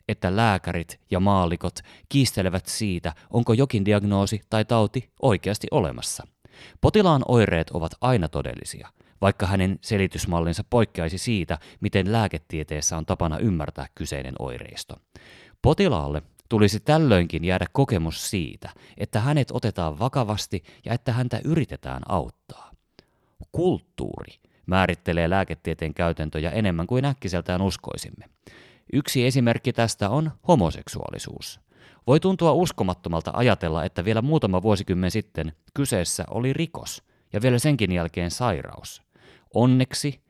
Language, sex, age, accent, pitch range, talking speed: Finnish, male, 30-49, native, 85-120 Hz, 115 wpm